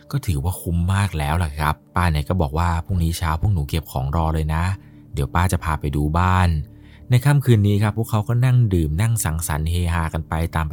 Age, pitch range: 20-39, 80-95 Hz